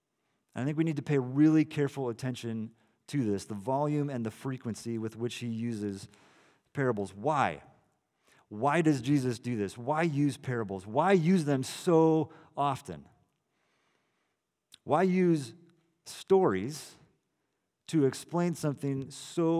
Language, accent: English, American